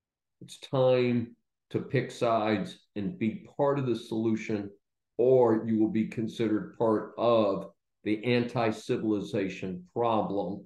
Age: 50-69